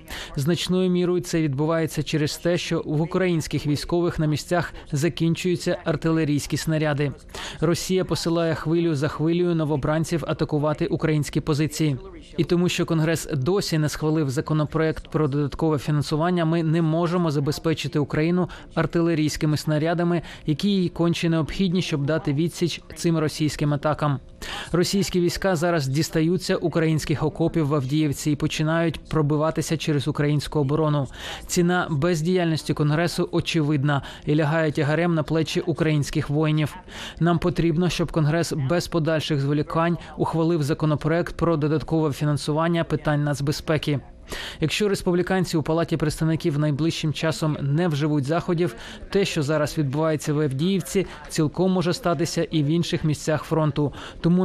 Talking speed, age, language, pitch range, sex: 130 wpm, 20-39, Ukrainian, 150-170 Hz, male